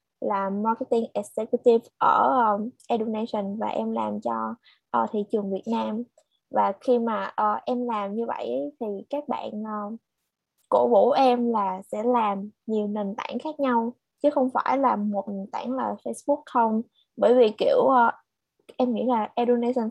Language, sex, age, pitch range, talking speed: Vietnamese, female, 20-39, 210-255 Hz, 170 wpm